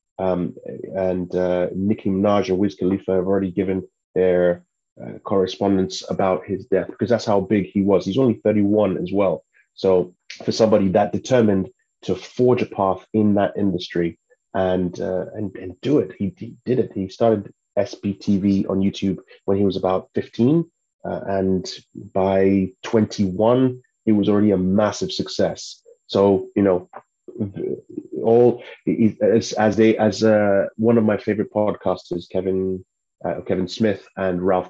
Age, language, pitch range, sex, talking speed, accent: 30-49, English, 95-110 Hz, male, 155 wpm, British